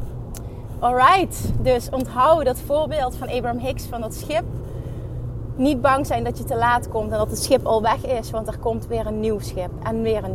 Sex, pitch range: female, 110-130 Hz